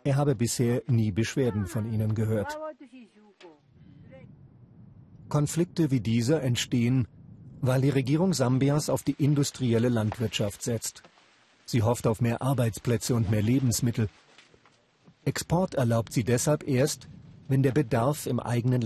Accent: German